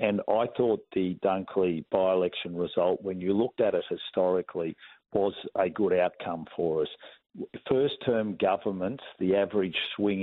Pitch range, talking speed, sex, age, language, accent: 90-110 Hz, 140 wpm, male, 50-69, English, Australian